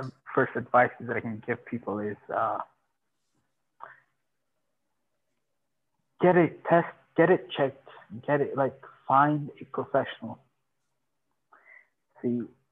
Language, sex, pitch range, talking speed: English, male, 120-140 Hz, 105 wpm